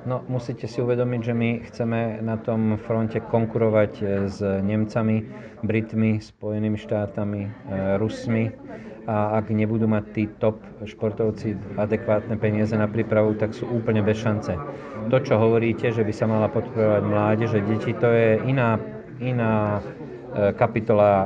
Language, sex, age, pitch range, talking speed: Slovak, male, 40-59, 105-115 Hz, 135 wpm